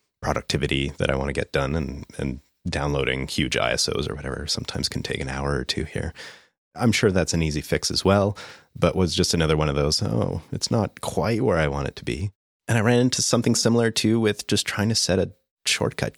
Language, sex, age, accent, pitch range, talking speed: English, male, 30-49, American, 70-100 Hz, 225 wpm